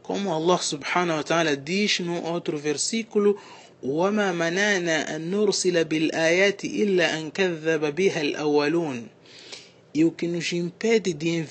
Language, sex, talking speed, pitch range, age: Portuguese, male, 105 wpm, 150-185 Hz, 30-49